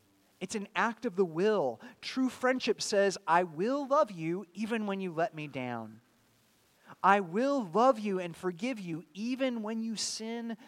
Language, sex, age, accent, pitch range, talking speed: English, male, 30-49, American, 145-215 Hz, 170 wpm